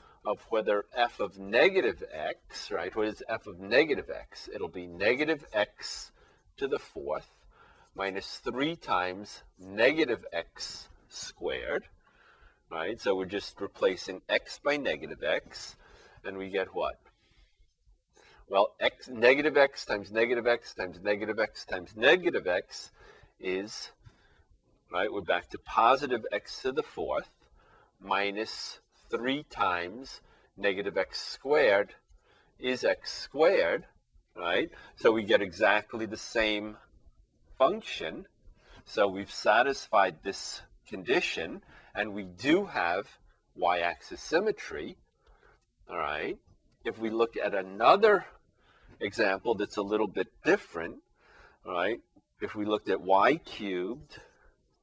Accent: American